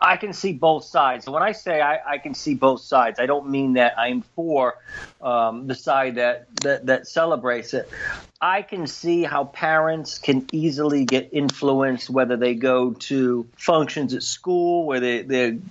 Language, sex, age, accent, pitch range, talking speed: English, male, 40-59, American, 130-160 Hz, 185 wpm